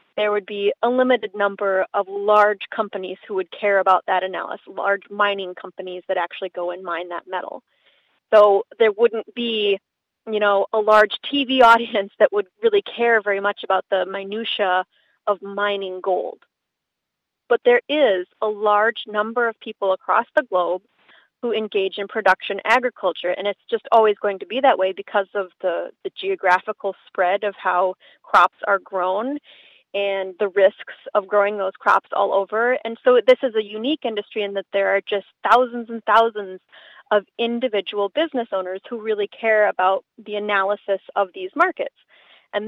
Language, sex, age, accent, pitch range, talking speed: English, female, 30-49, American, 195-230 Hz, 170 wpm